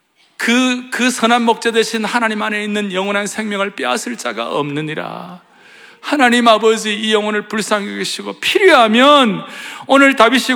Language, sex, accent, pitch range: Korean, male, native, 180-260 Hz